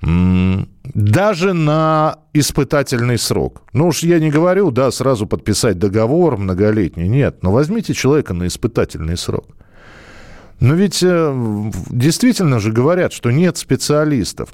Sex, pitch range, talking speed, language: male, 100-150 Hz, 120 wpm, Russian